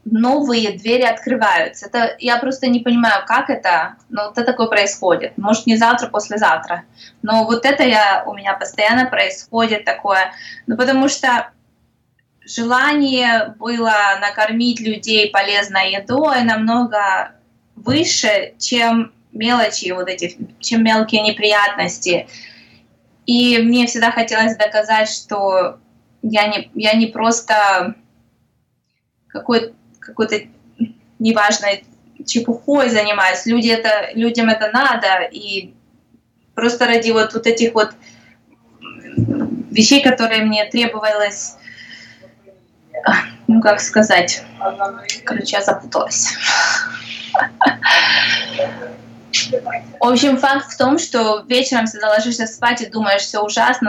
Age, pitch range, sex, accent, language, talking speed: 20-39, 210-240 Hz, female, native, Ukrainian, 110 wpm